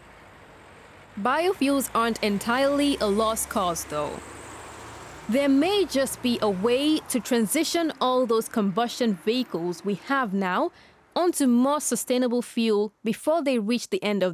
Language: English